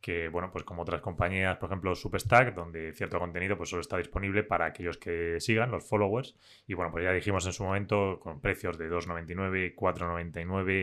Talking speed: 190 wpm